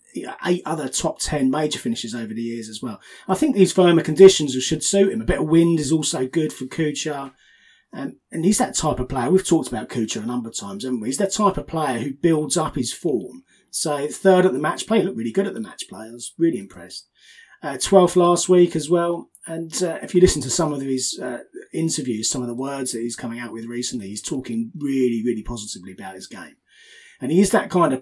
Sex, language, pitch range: male, English, 120-170 Hz